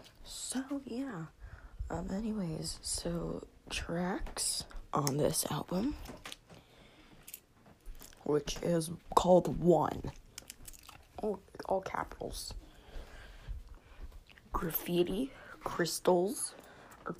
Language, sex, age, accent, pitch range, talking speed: English, female, 20-39, American, 150-185 Hz, 65 wpm